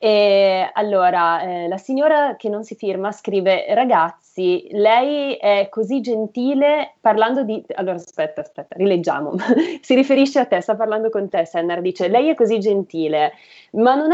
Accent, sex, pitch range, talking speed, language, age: native, female, 180-225 Hz, 155 wpm, Italian, 30-49